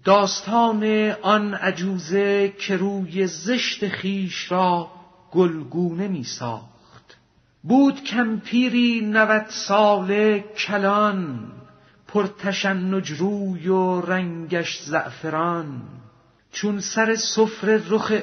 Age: 50-69